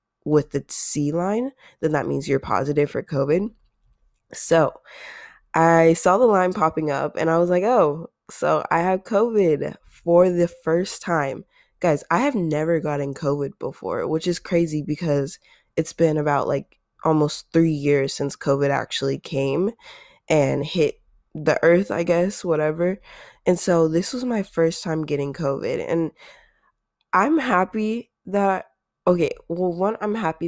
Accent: American